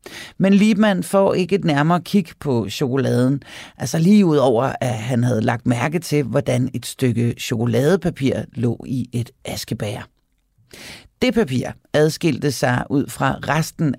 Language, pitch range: Danish, 125-180 Hz